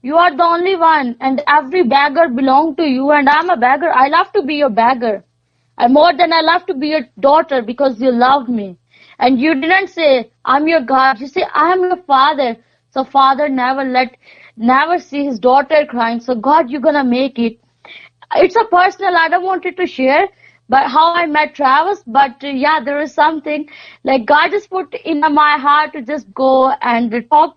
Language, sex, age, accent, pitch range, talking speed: English, female, 20-39, Indian, 250-315 Hz, 200 wpm